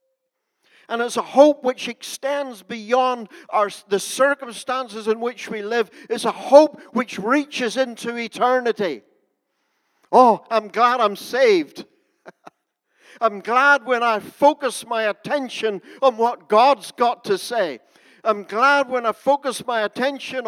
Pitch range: 150-255 Hz